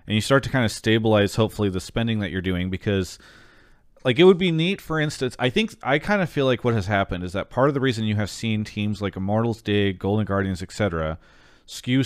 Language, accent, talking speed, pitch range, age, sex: English, American, 240 wpm, 100-125 Hz, 30-49, male